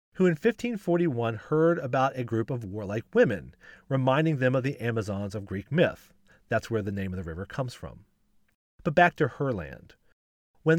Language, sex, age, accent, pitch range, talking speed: English, male, 40-59, American, 110-165 Hz, 180 wpm